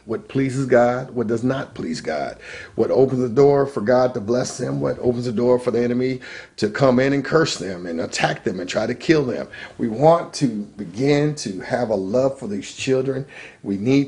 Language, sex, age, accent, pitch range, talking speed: English, male, 40-59, American, 105-130 Hz, 215 wpm